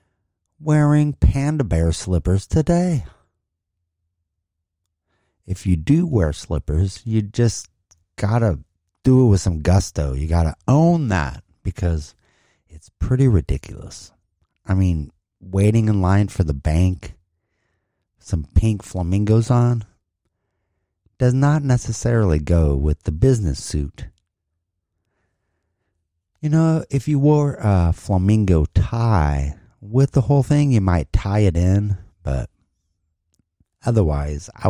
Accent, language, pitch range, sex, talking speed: American, English, 85-115 Hz, male, 115 wpm